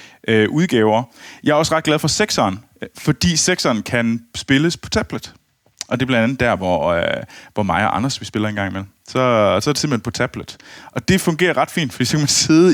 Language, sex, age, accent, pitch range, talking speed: Danish, male, 30-49, native, 110-145 Hz, 220 wpm